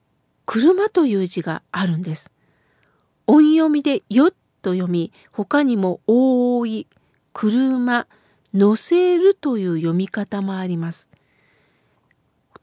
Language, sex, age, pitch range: Japanese, female, 50-69, 215-335 Hz